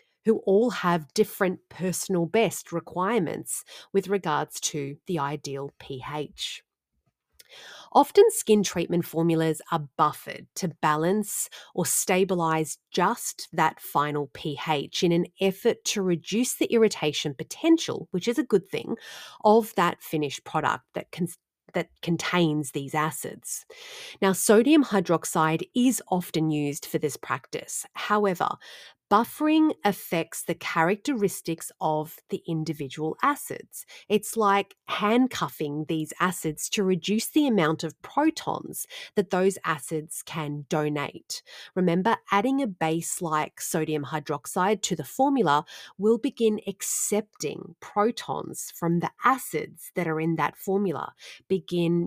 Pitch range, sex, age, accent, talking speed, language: 155-210 Hz, female, 30-49, Australian, 120 wpm, English